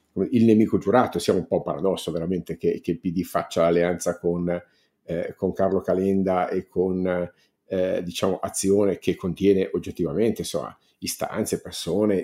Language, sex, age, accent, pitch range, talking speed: Italian, male, 50-69, native, 90-105 Hz, 145 wpm